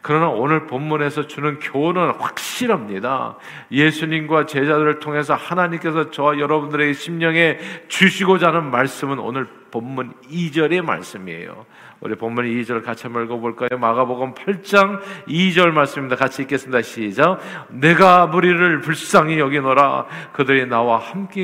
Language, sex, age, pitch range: Korean, male, 50-69, 125-160 Hz